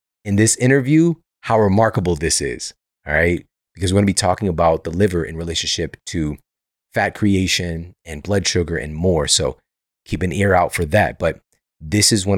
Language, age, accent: English, 30-49, American